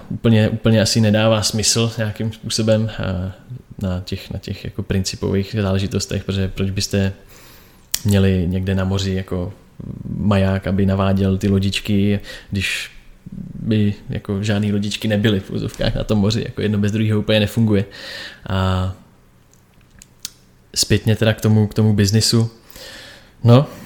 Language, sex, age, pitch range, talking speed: Czech, male, 20-39, 95-110 Hz, 130 wpm